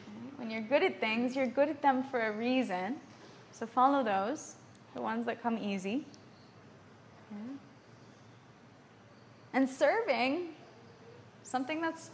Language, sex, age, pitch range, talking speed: English, female, 20-39, 210-280 Hz, 115 wpm